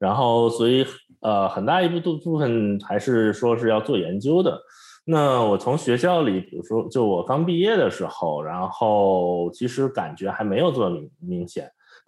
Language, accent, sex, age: Chinese, native, male, 20-39